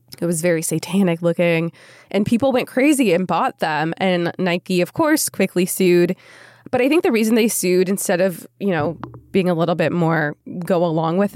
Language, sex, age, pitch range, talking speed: English, female, 20-39, 165-205 Hz, 195 wpm